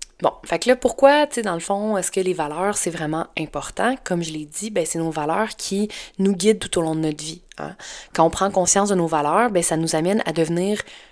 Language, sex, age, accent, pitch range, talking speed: French, female, 20-39, Canadian, 160-210 Hz, 260 wpm